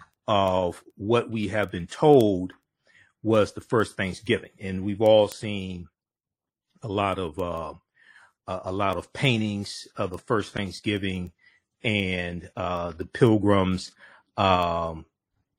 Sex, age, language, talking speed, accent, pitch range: male, 40-59, English, 120 wpm, American, 90-110 Hz